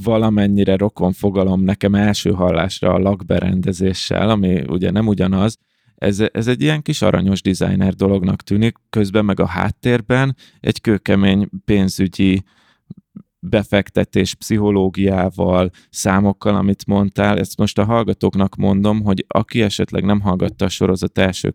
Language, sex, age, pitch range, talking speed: Hungarian, male, 20-39, 95-110 Hz, 130 wpm